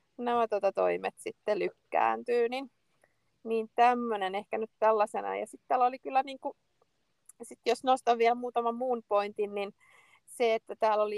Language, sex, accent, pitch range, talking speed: Finnish, female, native, 180-220 Hz, 155 wpm